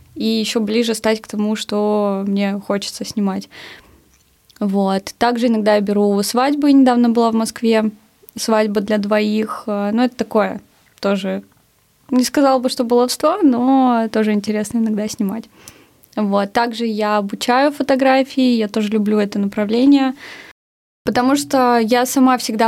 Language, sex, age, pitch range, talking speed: Russian, female, 20-39, 210-250 Hz, 140 wpm